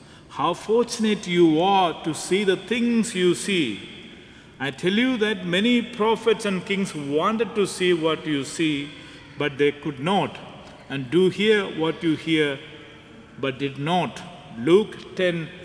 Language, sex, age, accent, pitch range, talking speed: English, male, 50-69, Indian, 160-215 Hz, 150 wpm